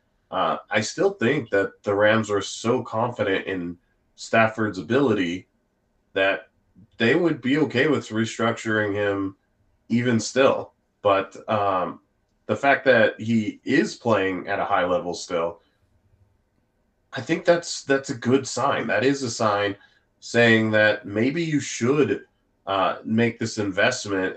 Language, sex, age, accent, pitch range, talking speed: English, male, 30-49, American, 100-125 Hz, 140 wpm